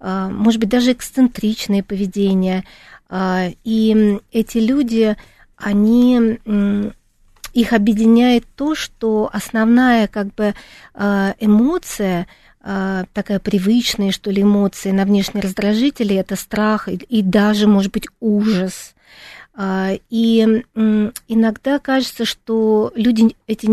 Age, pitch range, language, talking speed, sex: 40-59, 200-235 Hz, Russian, 95 wpm, female